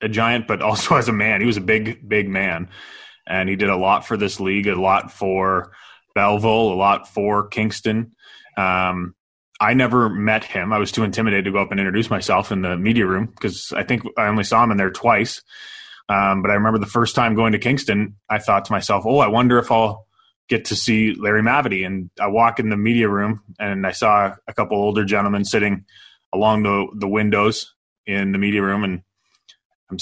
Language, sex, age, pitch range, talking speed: English, male, 20-39, 100-115 Hz, 215 wpm